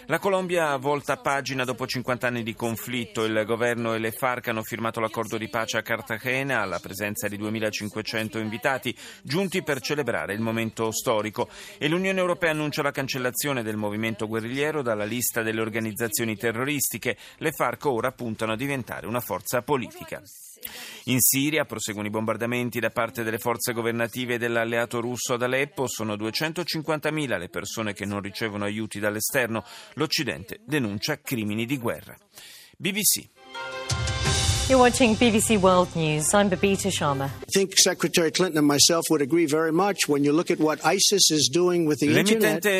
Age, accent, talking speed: 30-49, native, 120 wpm